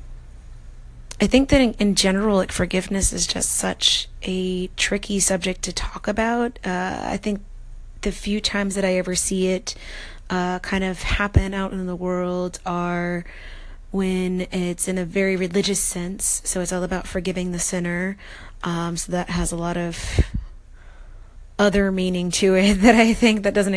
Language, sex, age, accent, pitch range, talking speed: English, female, 30-49, American, 175-190 Hz, 165 wpm